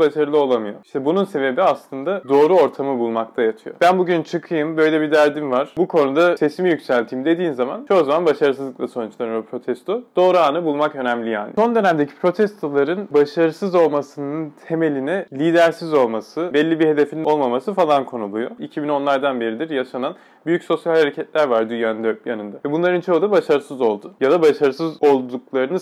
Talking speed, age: 150 wpm, 30-49